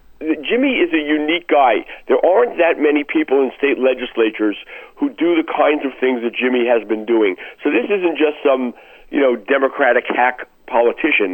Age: 50-69